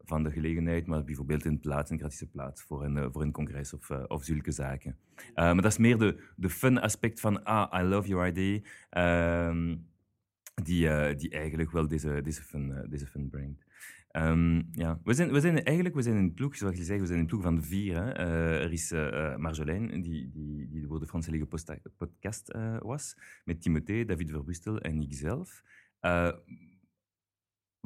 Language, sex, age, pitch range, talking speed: Dutch, male, 30-49, 75-95 Hz, 175 wpm